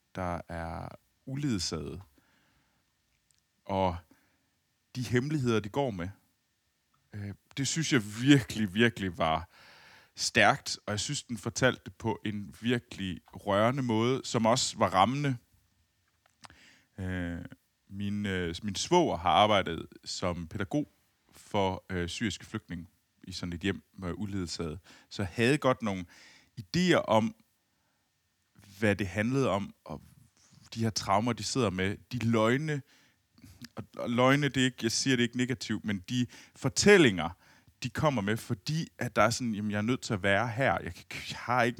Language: Danish